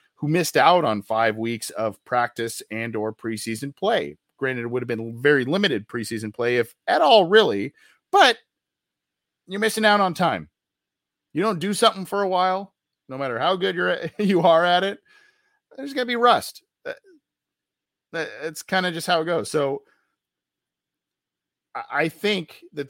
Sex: male